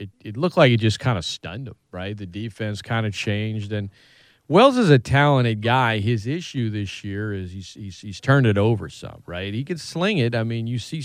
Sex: male